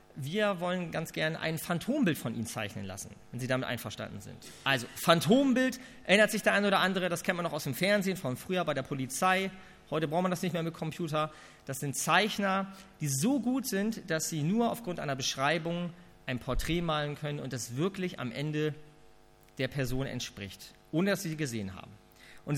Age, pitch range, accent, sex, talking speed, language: 40-59, 140-200 Hz, German, male, 200 wpm, German